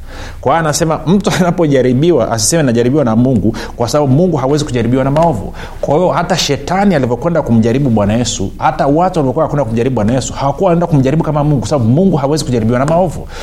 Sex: male